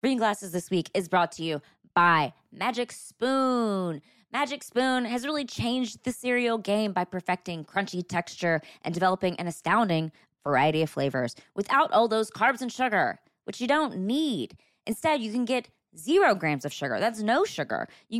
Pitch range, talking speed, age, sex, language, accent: 170-255 Hz, 170 wpm, 20-39, female, English, American